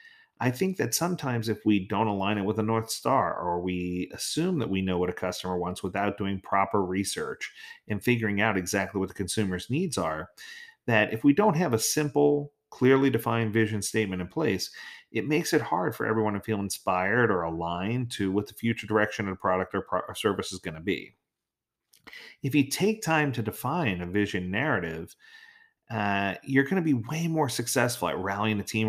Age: 40-59